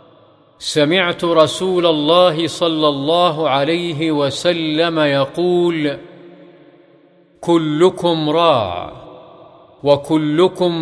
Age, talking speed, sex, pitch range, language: 50-69, 60 wpm, male, 150-170 Hz, Arabic